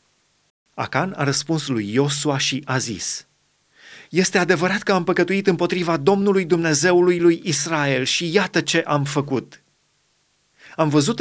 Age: 30-49